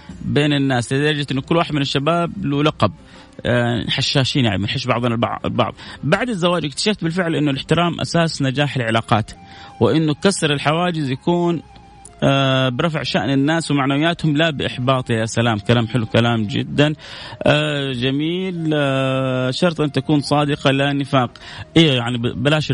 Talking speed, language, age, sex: 130 wpm, Arabic, 30-49, male